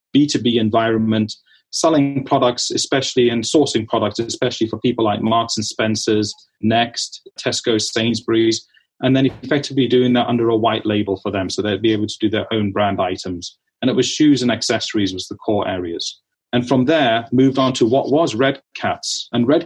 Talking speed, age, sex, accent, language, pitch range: 185 wpm, 30-49, male, British, English, 110-135 Hz